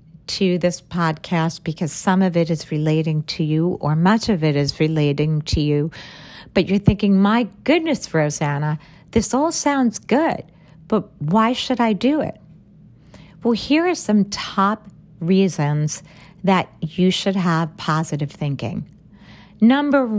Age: 50-69